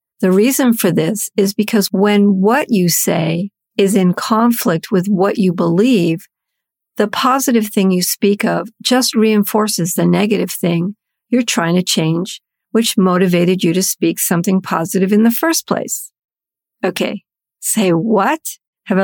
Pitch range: 180-230 Hz